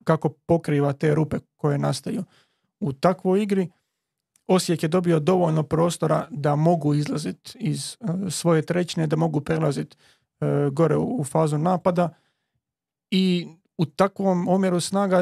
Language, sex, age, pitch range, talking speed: Croatian, male, 30-49, 155-180 Hz, 125 wpm